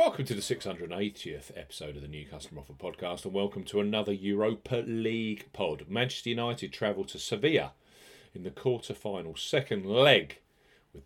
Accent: British